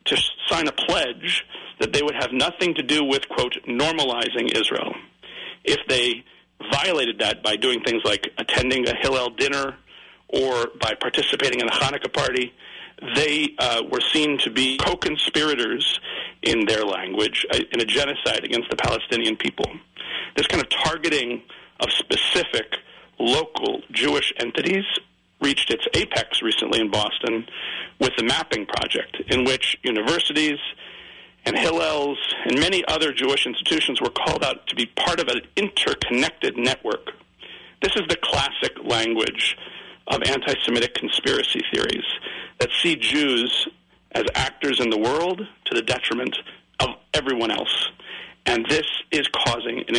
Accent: American